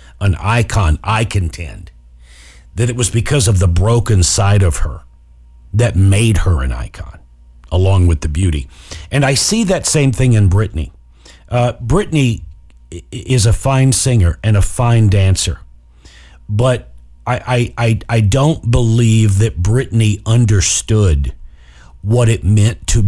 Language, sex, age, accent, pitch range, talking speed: English, male, 50-69, American, 85-120 Hz, 145 wpm